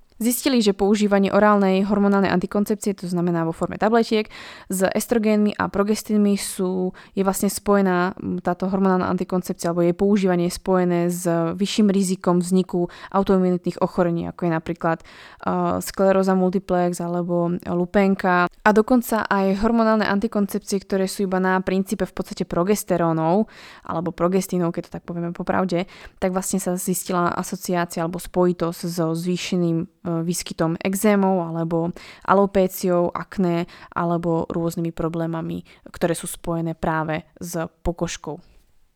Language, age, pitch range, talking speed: Slovak, 20-39, 175-205 Hz, 130 wpm